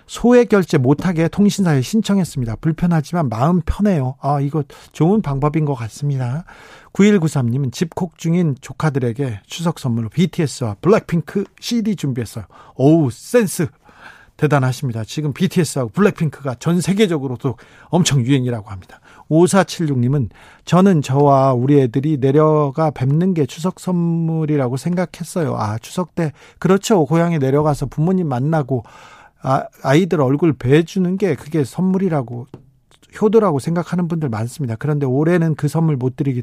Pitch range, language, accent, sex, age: 135-175 Hz, Korean, native, male, 50-69